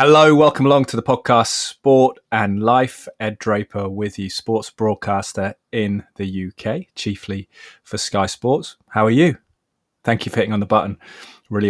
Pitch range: 95-110 Hz